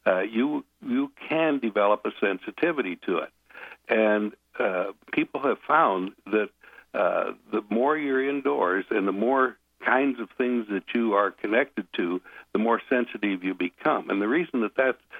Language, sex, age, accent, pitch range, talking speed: English, male, 60-79, American, 95-115 Hz, 160 wpm